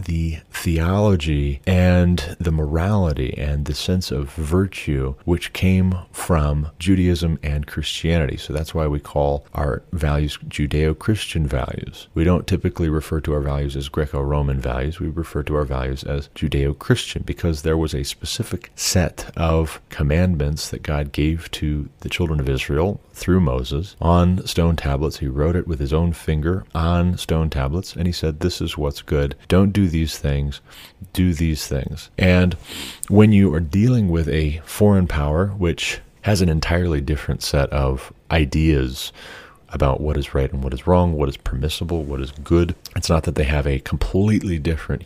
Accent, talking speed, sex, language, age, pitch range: American, 170 wpm, male, English, 30-49, 70-90 Hz